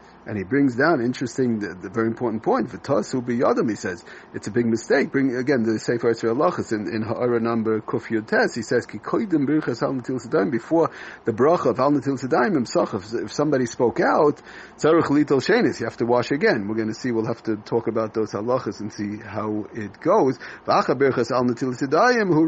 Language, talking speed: English, 210 wpm